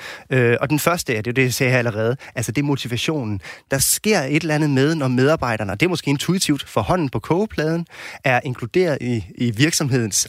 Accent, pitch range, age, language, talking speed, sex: native, 120-150 Hz, 20-39, Danish, 220 wpm, male